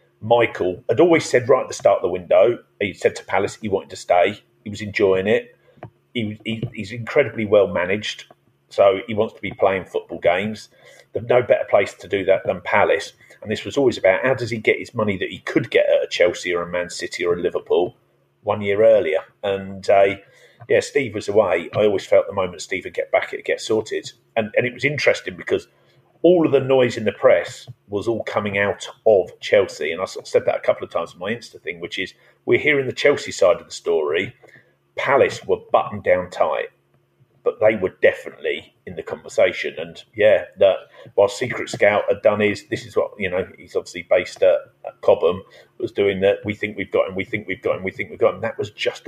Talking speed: 225 wpm